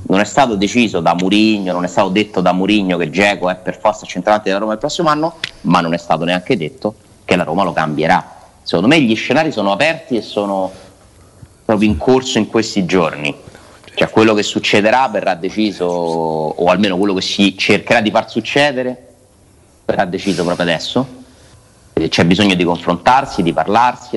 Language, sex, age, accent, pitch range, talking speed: Italian, male, 30-49, native, 90-110 Hz, 180 wpm